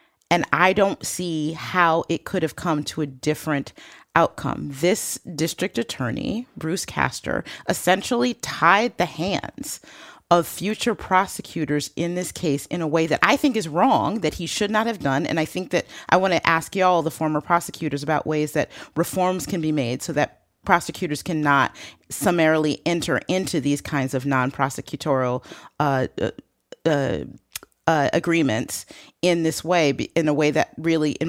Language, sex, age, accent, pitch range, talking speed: English, female, 30-49, American, 140-170 Hz, 165 wpm